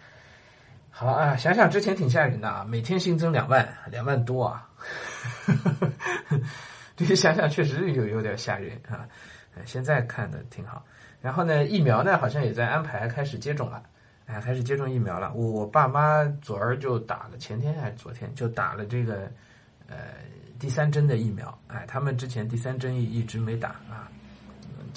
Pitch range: 115-140 Hz